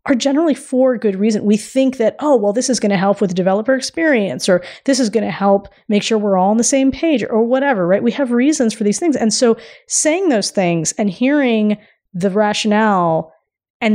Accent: American